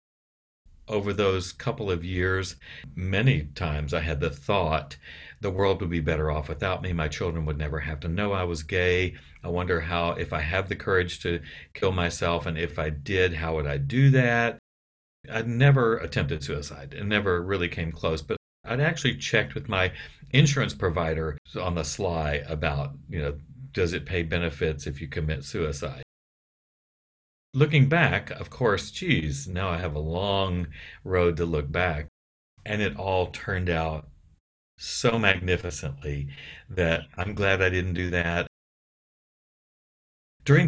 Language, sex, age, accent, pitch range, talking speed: English, male, 40-59, American, 75-100 Hz, 160 wpm